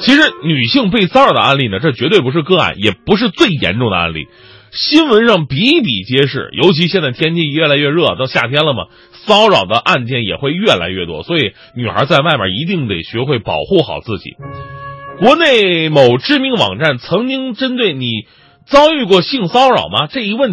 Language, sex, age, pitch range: Chinese, male, 30-49, 135-220 Hz